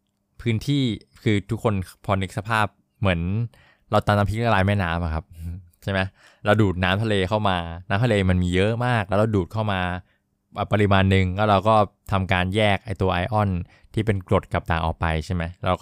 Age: 20-39